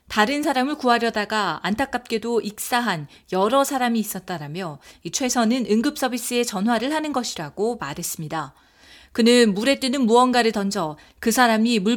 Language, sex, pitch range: Korean, female, 205-265 Hz